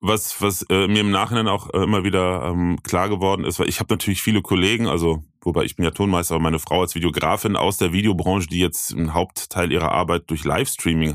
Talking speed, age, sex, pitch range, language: 225 wpm, 20-39, male, 85-105 Hz, German